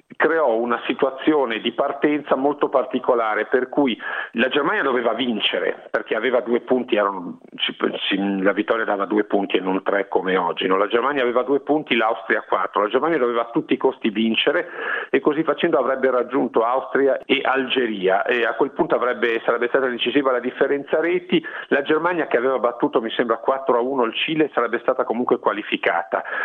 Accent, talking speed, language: native, 180 wpm, Italian